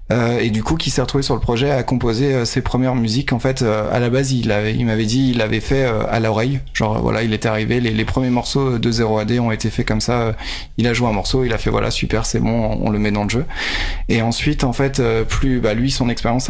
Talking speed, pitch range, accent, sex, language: 285 wpm, 110-130 Hz, French, male, French